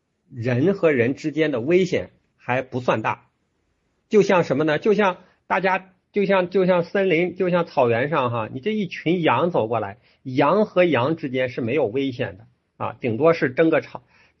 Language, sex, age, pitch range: Chinese, male, 50-69, 115-175 Hz